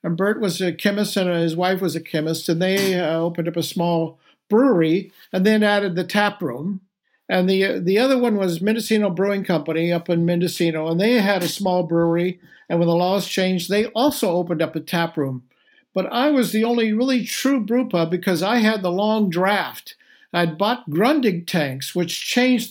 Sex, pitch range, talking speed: male, 170-210 Hz, 200 wpm